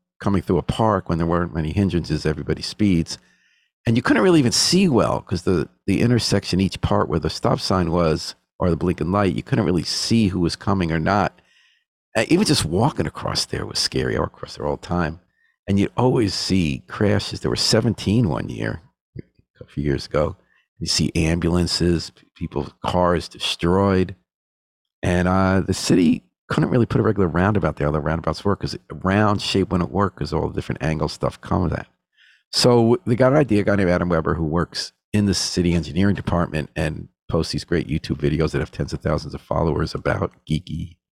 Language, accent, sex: English, American, male